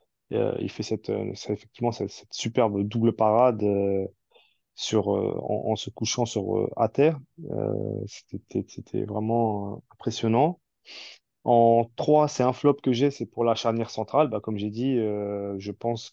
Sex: male